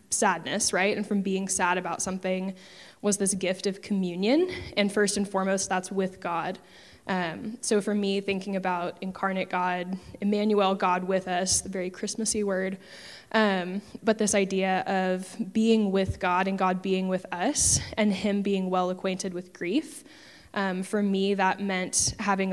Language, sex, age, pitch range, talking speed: English, female, 10-29, 185-200 Hz, 165 wpm